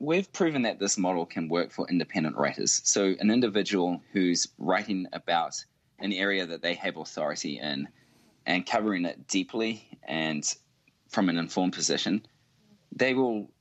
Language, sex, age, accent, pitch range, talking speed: English, male, 20-39, Australian, 85-110 Hz, 150 wpm